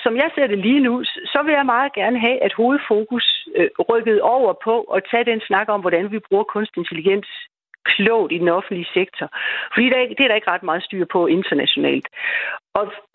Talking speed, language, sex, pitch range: 190 wpm, Danish, female, 190-250 Hz